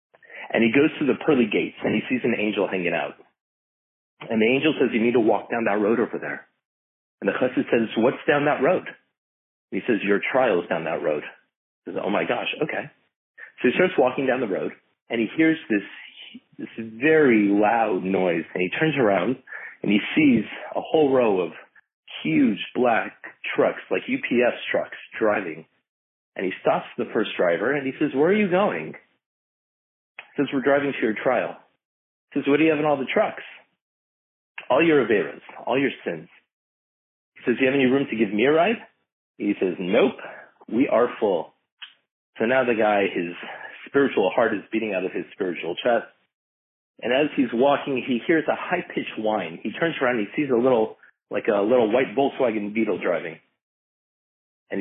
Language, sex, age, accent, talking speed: English, male, 40-59, American, 195 wpm